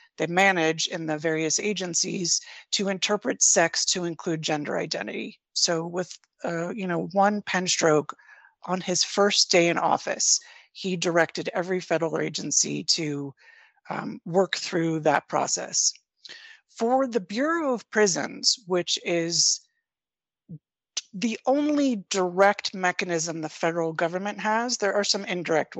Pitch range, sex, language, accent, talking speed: 170-230 Hz, female, English, American, 135 wpm